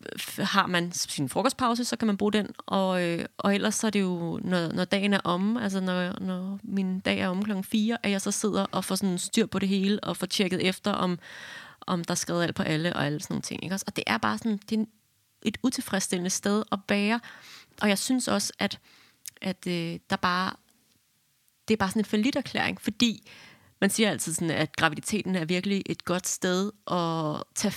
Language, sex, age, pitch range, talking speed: Danish, female, 30-49, 175-210 Hz, 215 wpm